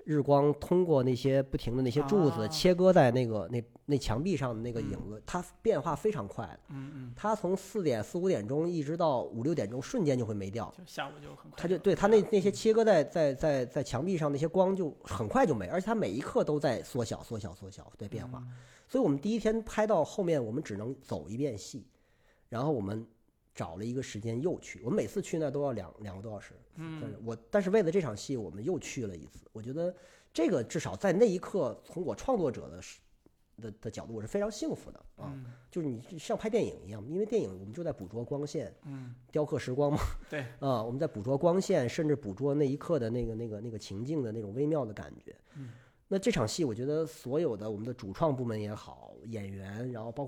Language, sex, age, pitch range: Chinese, male, 40-59, 115-170 Hz